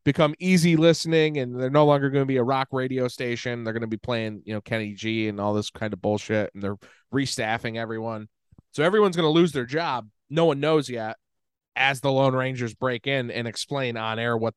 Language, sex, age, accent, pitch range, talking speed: English, male, 20-39, American, 115-150 Hz, 225 wpm